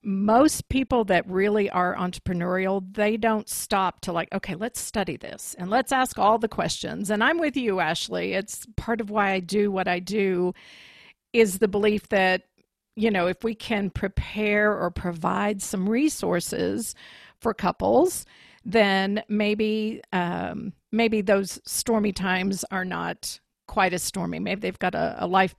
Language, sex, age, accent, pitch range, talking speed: English, female, 50-69, American, 190-230 Hz, 160 wpm